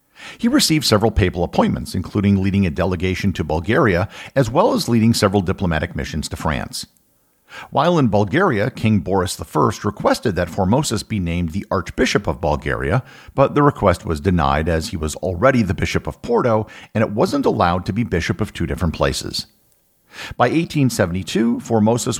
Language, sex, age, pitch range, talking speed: English, male, 50-69, 85-120 Hz, 170 wpm